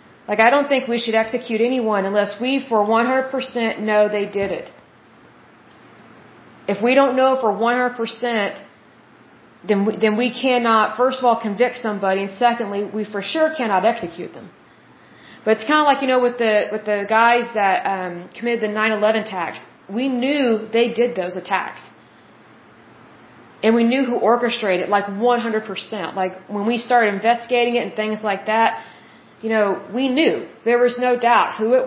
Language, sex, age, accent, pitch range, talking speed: Bengali, female, 30-49, American, 200-240 Hz, 175 wpm